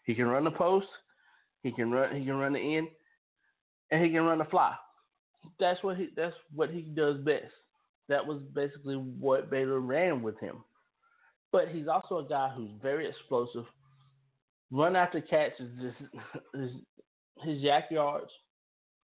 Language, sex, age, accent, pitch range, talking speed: English, male, 20-39, American, 135-190 Hz, 155 wpm